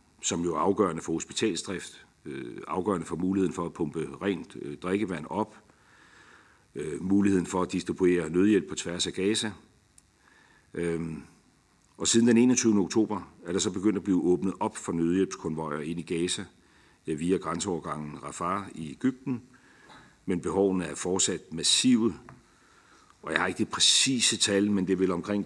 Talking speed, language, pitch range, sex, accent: 150 wpm, Danish, 80-100 Hz, male, native